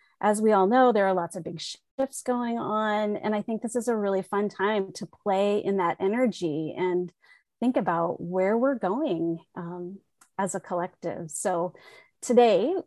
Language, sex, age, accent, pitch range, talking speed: English, female, 30-49, American, 185-245 Hz, 175 wpm